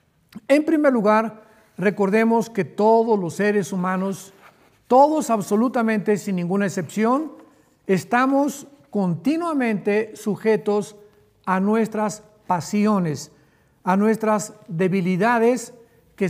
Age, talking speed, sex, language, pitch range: 50-69, 90 wpm, male, Spanish, 195-235 Hz